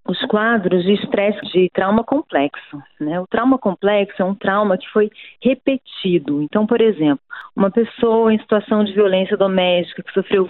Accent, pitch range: Brazilian, 180-235 Hz